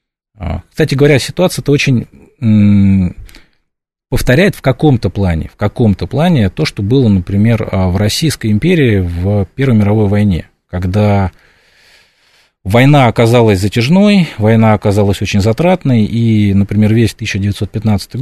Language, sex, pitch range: Russian, male, 95-120 Hz